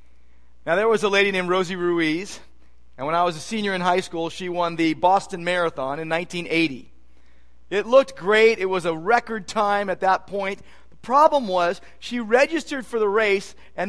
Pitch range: 165-215 Hz